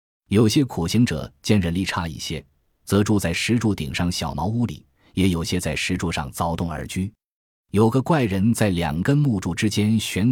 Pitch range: 85-115 Hz